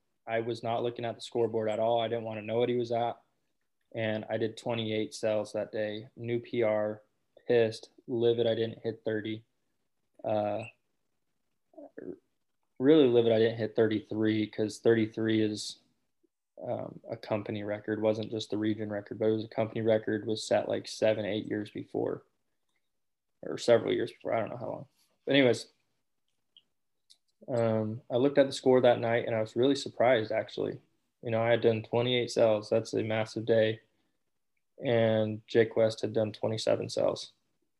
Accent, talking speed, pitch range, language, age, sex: American, 170 wpm, 110-120 Hz, English, 20-39, male